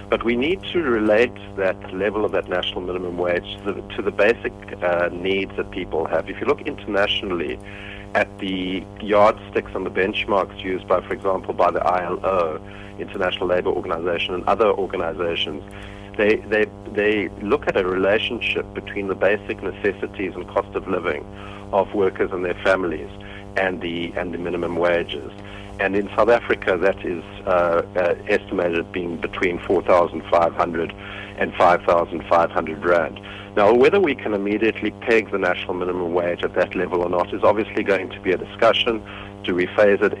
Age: 60-79